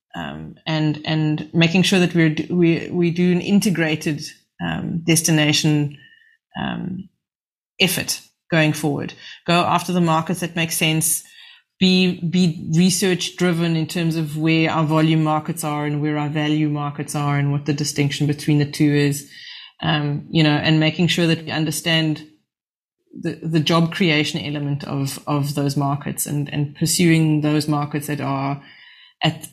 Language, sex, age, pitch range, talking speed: English, female, 30-49, 150-175 Hz, 160 wpm